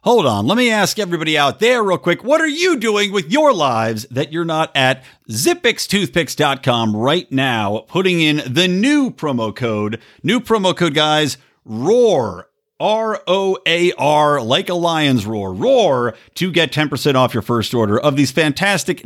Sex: male